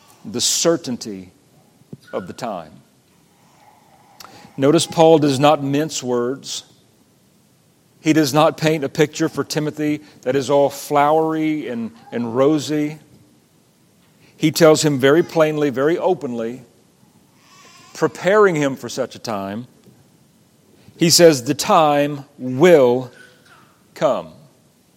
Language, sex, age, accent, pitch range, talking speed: English, male, 40-59, American, 135-155 Hz, 110 wpm